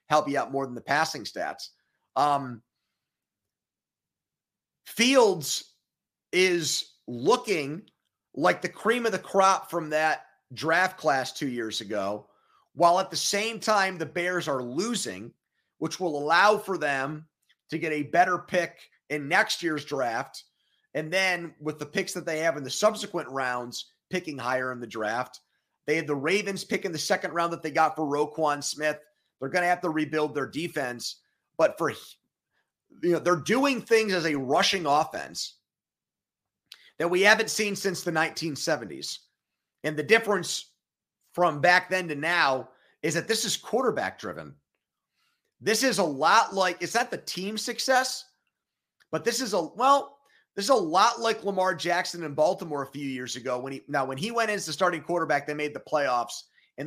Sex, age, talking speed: male, 30-49, 175 wpm